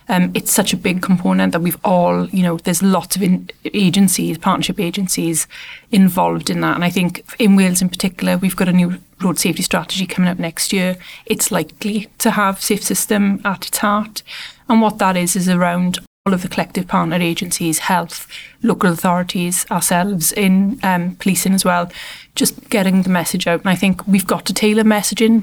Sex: female